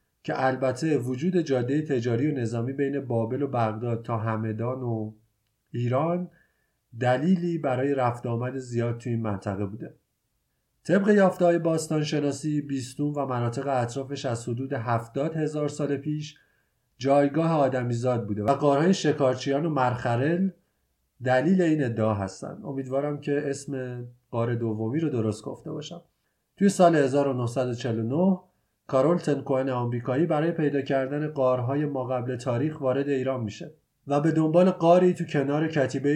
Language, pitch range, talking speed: Persian, 120-155 Hz, 140 wpm